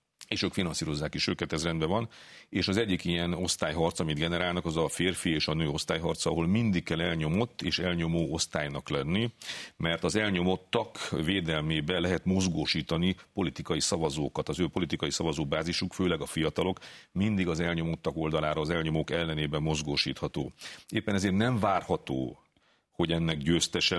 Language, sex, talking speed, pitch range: Hungarian, male, 150 wpm, 80-95 Hz